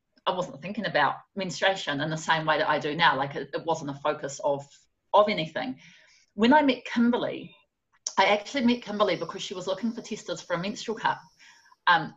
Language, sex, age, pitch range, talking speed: English, female, 30-49, 175-245 Hz, 200 wpm